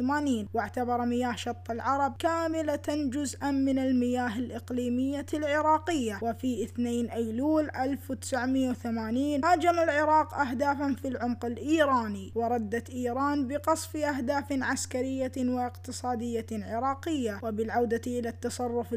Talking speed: 95 wpm